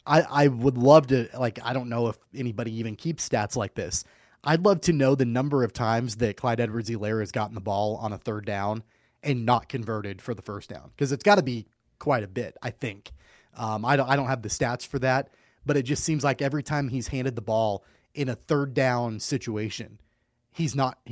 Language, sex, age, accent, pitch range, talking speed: English, male, 30-49, American, 115-140 Hz, 225 wpm